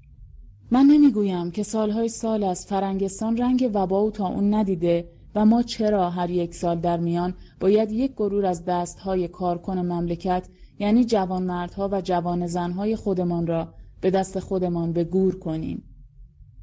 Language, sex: English, female